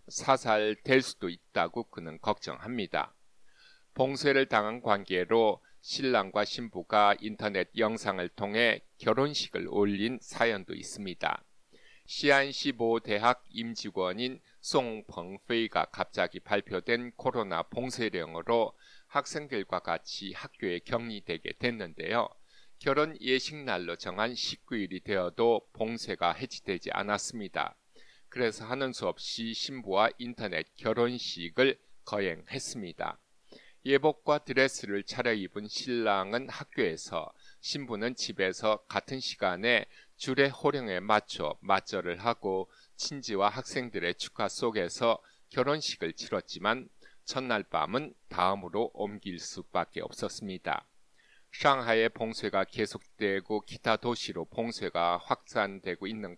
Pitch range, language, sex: 100-125 Hz, English, male